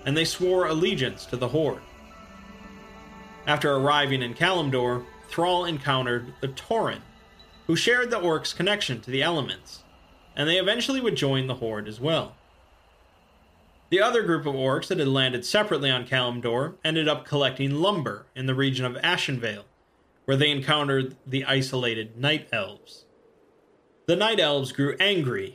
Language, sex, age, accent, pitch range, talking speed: English, male, 30-49, American, 130-180 Hz, 150 wpm